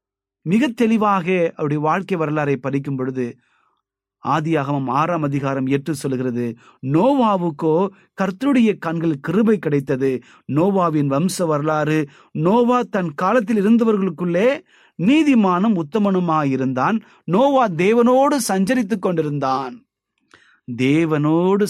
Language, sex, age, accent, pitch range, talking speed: Tamil, male, 30-49, native, 135-195 Hz, 85 wpm